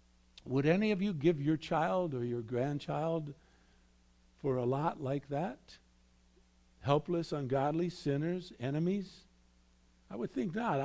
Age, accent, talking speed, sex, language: 60-79, American, 125 wpm, male, English